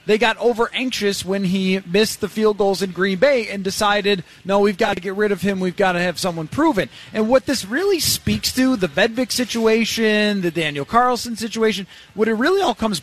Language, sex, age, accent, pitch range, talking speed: English, male, 20-39, American, 185-225 Hz, 210 wpm